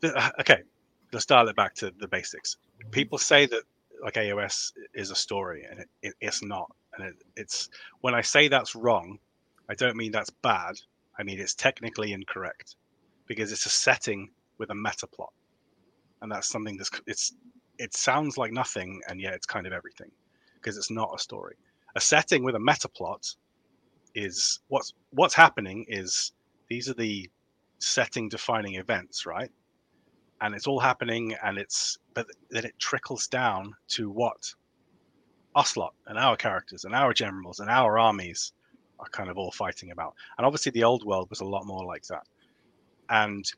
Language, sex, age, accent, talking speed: English, male, 30-49, British, 175 wpm